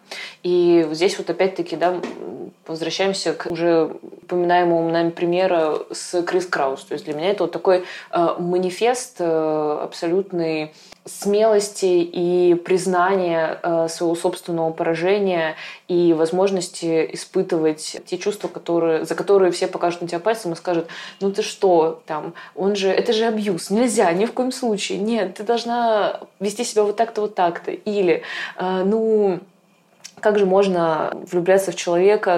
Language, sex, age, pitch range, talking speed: Russian, female, 20-39, 170-195 Hz, 145 wpm